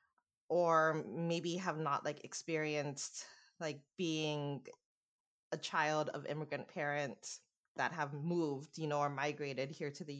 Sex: female